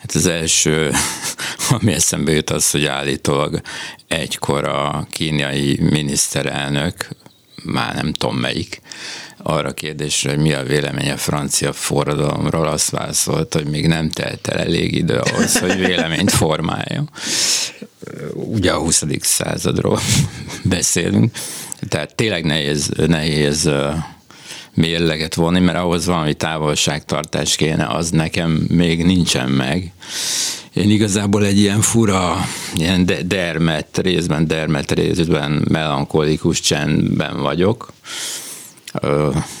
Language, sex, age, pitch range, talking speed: Hungarian, male, 60-79, 75-90 Hz, 110 wpm